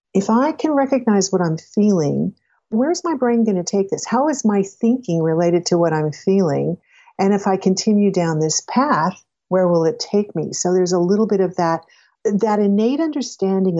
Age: 50-69